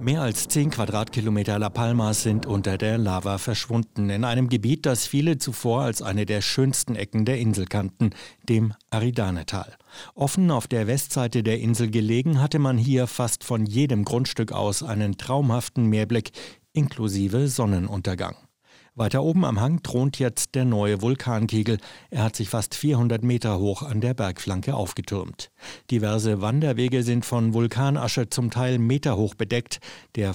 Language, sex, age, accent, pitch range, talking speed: German, male, 60-79, German, 105-125 Hz, 150 wpm